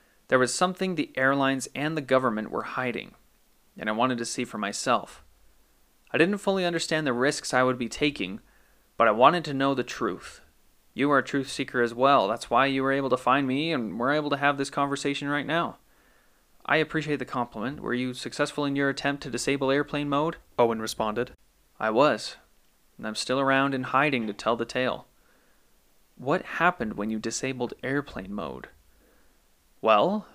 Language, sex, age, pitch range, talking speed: English, male, 30-49, 120-145 Hz, 185 wpm